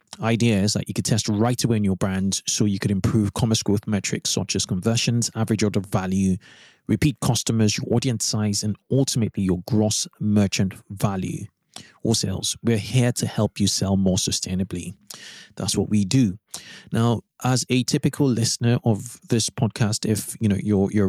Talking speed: 180 wpm